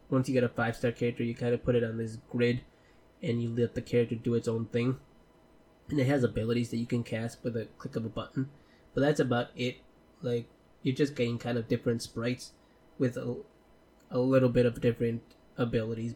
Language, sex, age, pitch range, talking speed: English, male, 10-29, 115-125 Hz, 210 wpm